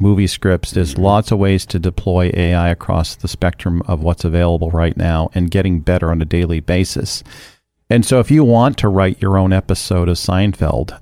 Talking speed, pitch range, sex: 195 wpm, 85-105 Hz, male